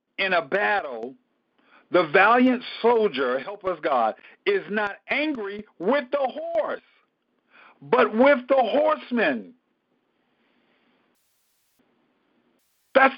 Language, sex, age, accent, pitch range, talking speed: English, male, 50-69, American, 190-260 Hz, 90 wpm